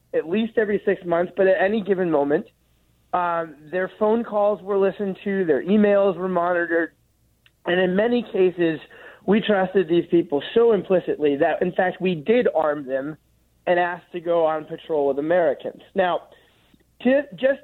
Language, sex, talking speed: English, male, 165 wpm